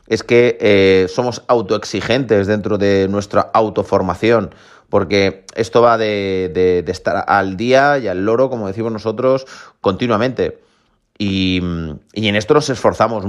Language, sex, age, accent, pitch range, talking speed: Spanish, male, 30-49, Spanish, 100-125 Hz, 140 wpm